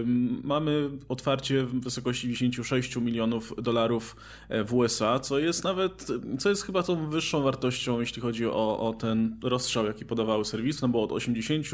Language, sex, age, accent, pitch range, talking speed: Polish, male, 20-39, native, 120-150 Hz, 160 wpm